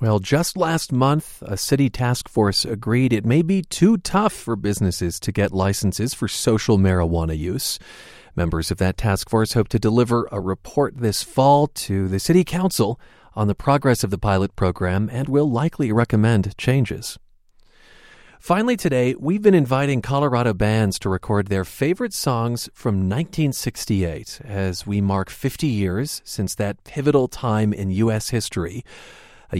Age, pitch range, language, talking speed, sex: 40-59, 100-140 Hz, English, 160 wpm, male